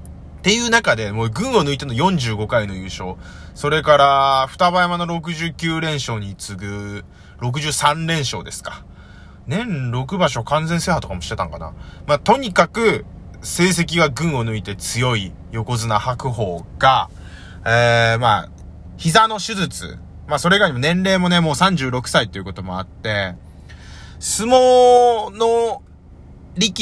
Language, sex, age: Japanese, male, 20-39